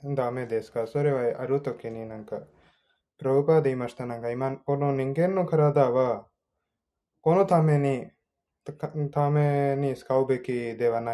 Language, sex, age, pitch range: Japanese, male, 20-39, 125-145 Hz